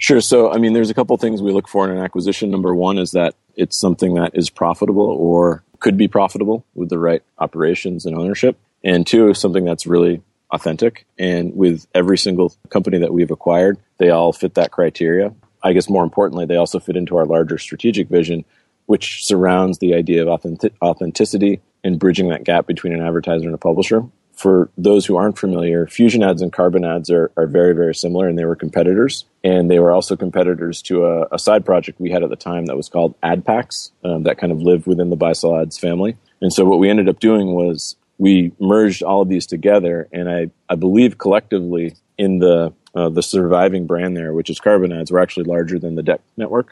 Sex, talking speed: male, 215 wpm